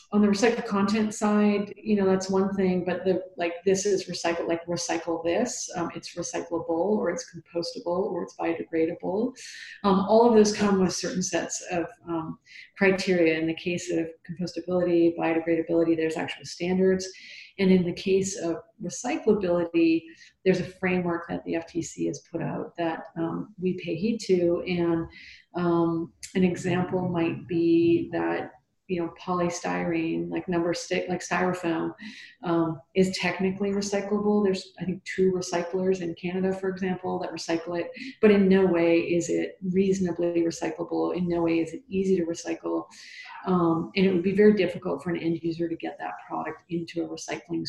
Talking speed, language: 165 wpm, English